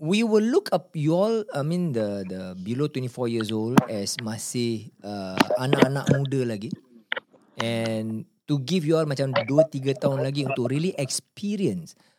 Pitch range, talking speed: 120-165 Hz, 160 wpm